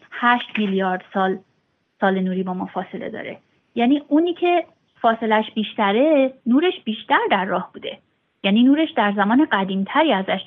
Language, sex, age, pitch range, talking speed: Persian, female, 30-49, 195-250 Hz, 145 wpm